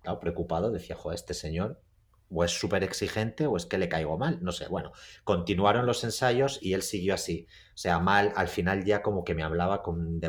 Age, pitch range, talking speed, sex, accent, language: 30-49, 90-110 Hz, 220 wpm, male, Spanish, Spanish